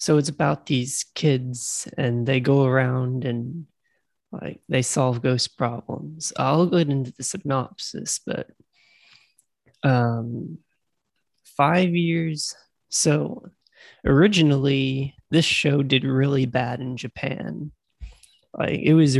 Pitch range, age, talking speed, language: 130-160 Hz, 20-39, 115 wpm, English